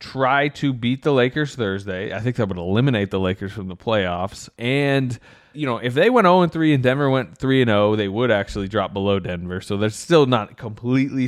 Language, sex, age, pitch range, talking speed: English, male, 20-39, 100-125 Hz, 225 wpm